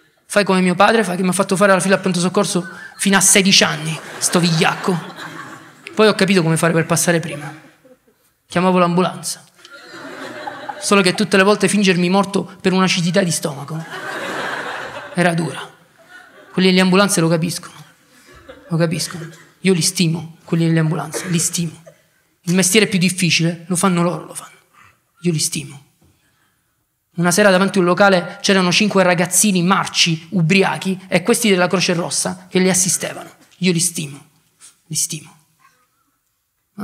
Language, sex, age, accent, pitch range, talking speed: Italian, male, 20-39, native, 165-195 Hz, 155 wpm